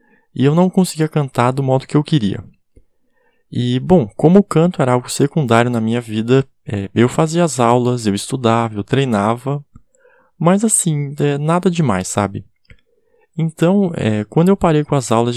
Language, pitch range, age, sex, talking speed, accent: Portuguese, 120-170 Hz, 20-39, male, 170 wpm, Brazilian